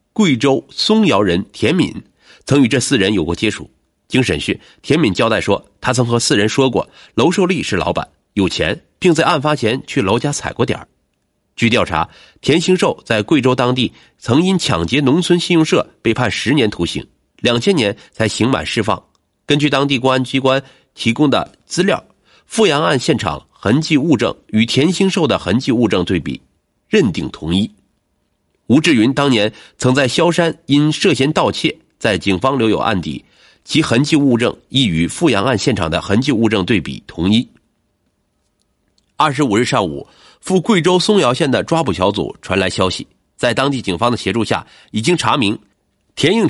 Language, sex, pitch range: Chinese, male, 105-150 Hz